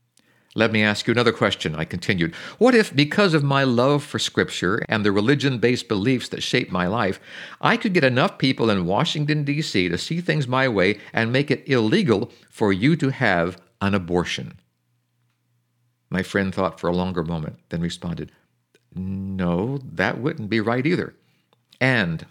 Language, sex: English, male